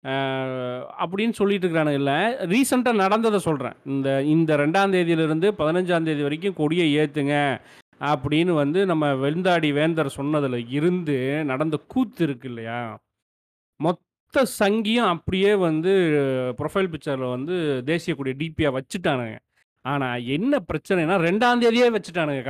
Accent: native